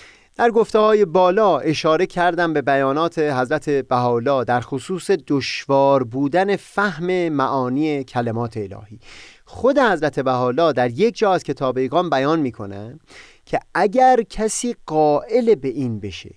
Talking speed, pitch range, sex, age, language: 125 wpm, 130-195 Hz, male, 30-49, Persian